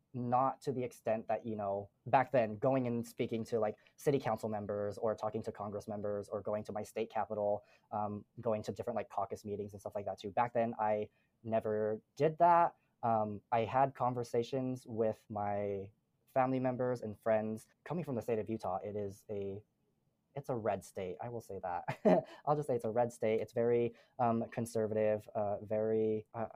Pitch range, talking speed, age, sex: 105-120 Hz, 195 wpm, 20-39, male